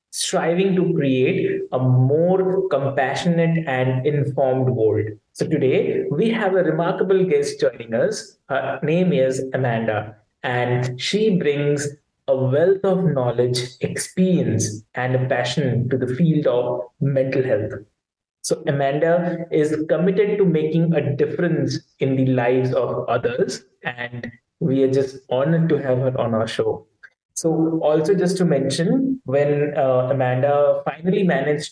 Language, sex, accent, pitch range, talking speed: English, male, Indian, 130-170 Hz, 140 wpm